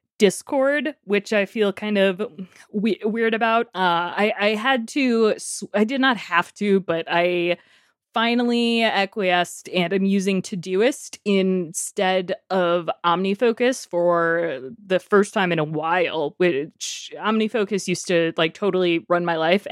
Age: 20-39